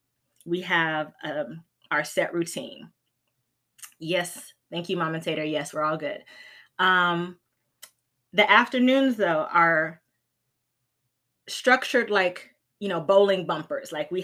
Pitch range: 160-195 Hz